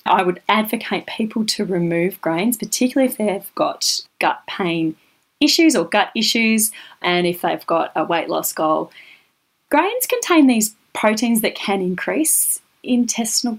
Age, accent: 30-49, Australian